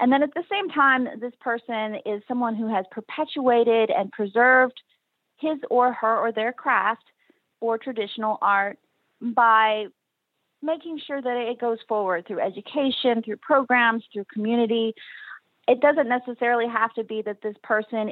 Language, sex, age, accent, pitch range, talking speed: English, female, 30-49, American, 195-245 Hz, 150 wpm